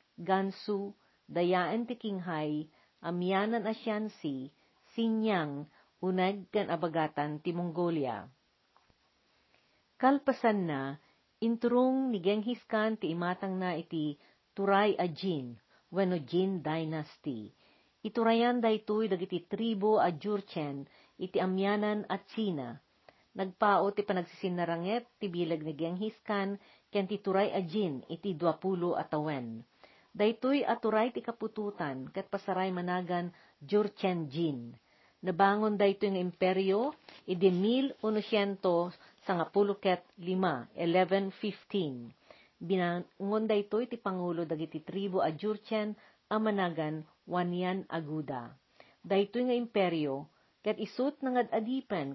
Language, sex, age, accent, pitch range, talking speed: Filipino, female, 50-69, native, 170-215 Hz, 95 wpm